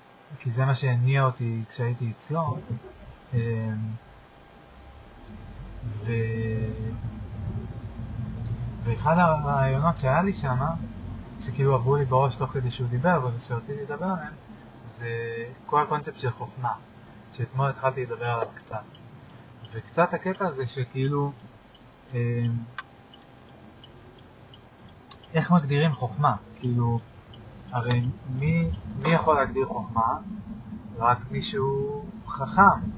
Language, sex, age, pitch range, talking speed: Hebrew, male, 30-49, 115-130 Hz, 95 wpm